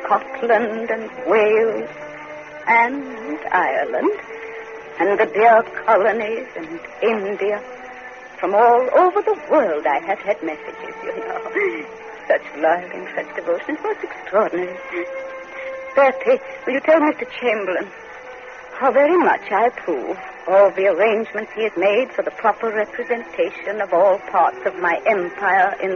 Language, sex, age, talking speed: English, female, 60-79, 135 wpm